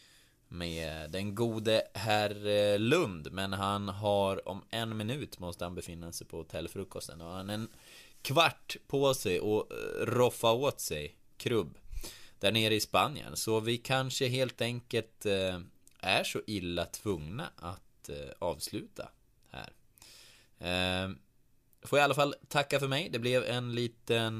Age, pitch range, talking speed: 20-39, 95-125 Hz, 140 wpm